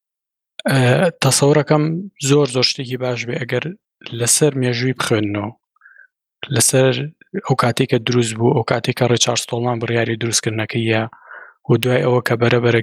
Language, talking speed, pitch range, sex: Arabic, 140 wpm, 120-140 Hz, male